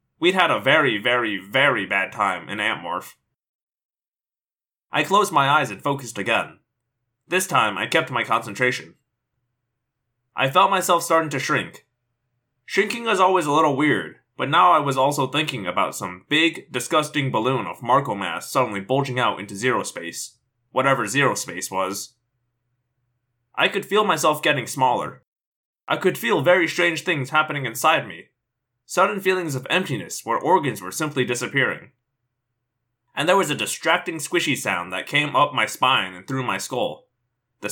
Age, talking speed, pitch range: 20-39, 160 wpm, 125-155 Hz